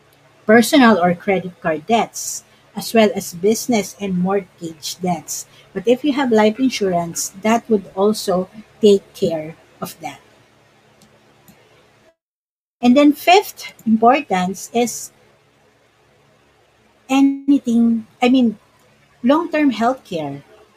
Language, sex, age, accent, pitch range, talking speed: Filipino, female, 50-69, native, 180-245 Hz, 105 wpm